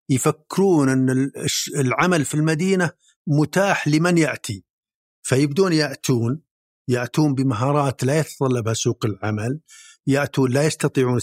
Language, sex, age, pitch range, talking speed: Arabic, male, 50-69, 120-150 Hz, 100 wpm